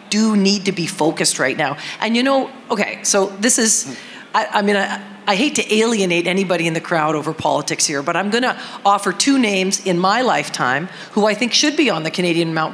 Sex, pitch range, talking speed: female, 175-220 Hz, 225 wpm